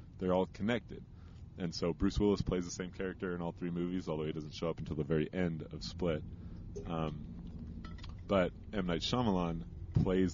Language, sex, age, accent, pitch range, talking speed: English, male, 30-49, American, 85-100 Hz, 185 wpm